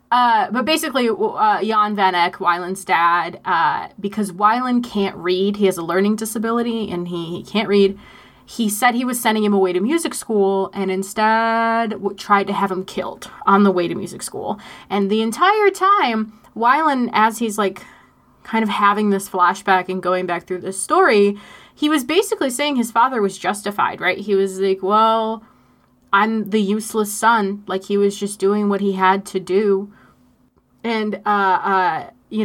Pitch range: 190-235 Hz